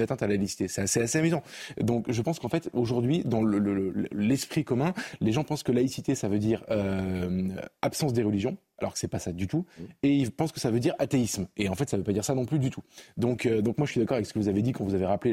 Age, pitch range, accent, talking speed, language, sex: 20-39, 100-130 Hz, French, 305 wpm, French, male